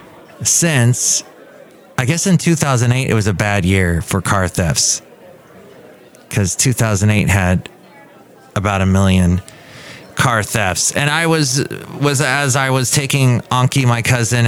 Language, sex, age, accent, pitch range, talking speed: English, male, 30-49, American, 105-135 Hz, 135 wpm